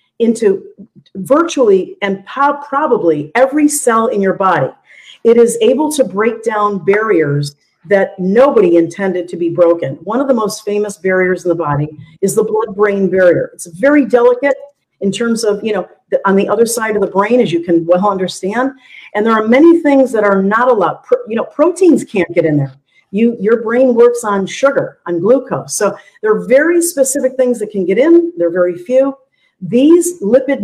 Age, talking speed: 50-69, 190 wpm